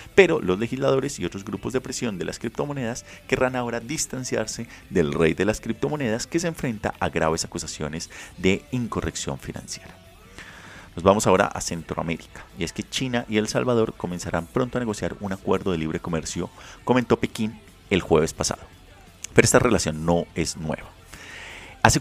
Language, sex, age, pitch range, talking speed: Spanish, male, 30-49, 85-115 Hz, 165 wpm